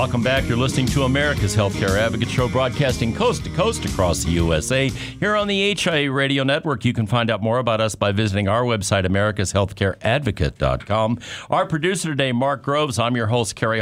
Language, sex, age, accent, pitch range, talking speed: English, male, 60-79, American, 110-145 Hz, 180 wpm